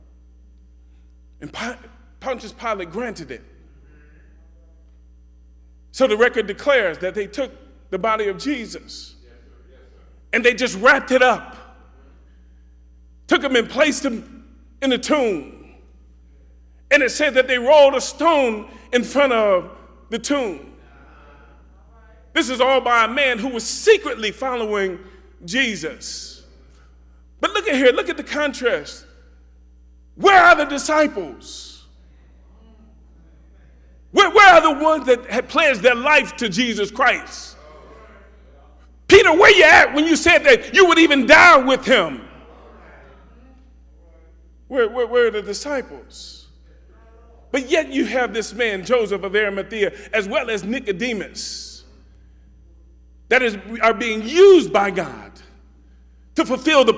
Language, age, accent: English, 40-59, American